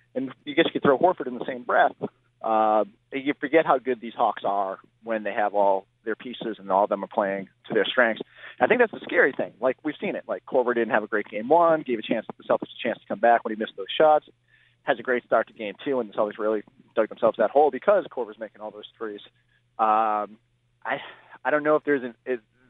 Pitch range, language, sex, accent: 110-130 Hz, English, male, American